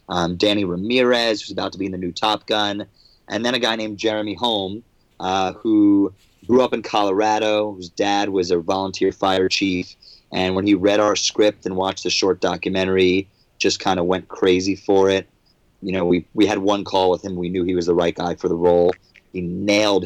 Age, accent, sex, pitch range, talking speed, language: 30-49, American, male, 90-105 Hz, 210 wpm, English